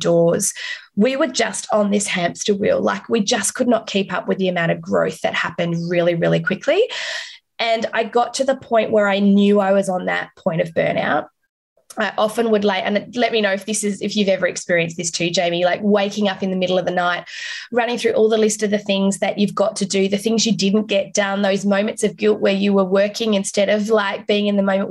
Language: English